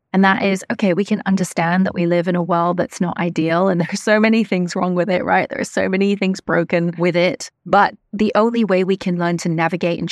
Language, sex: English, female